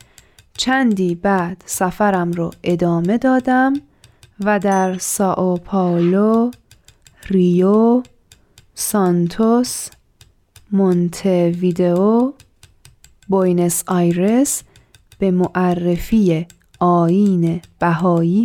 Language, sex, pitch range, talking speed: Persian, female, 175-220 Hz, 60 wpm